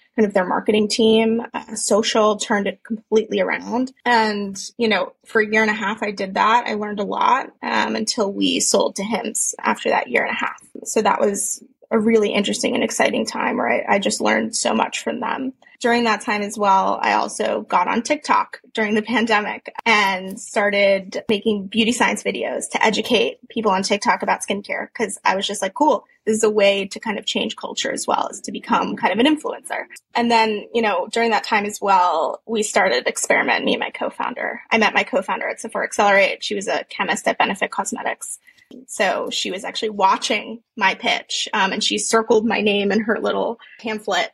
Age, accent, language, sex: 20-39, American, English, female